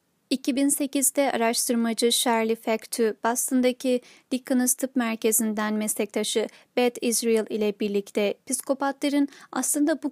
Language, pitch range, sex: Turkish, 225-290 Hz, female